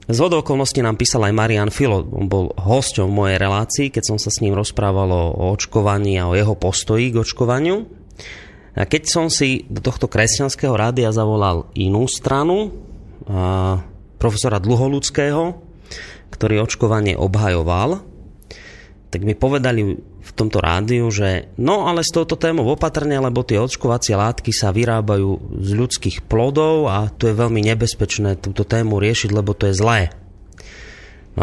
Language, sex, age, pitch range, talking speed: Slovak, male, 30-49, 100-125 Hz, 145 wpm